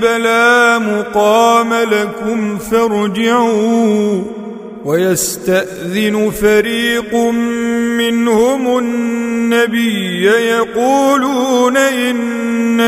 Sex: male